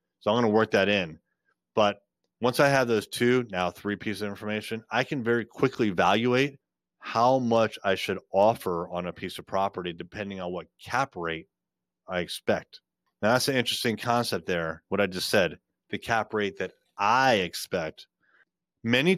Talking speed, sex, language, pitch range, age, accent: 175 wpm, male, English, 95-125 Hz, 30-49, American